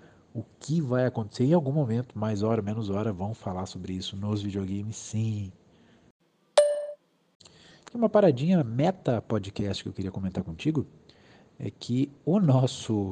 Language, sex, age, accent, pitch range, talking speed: Portuguese, male, 50-69, Brazilian, 105-130 Hz, 140 wpm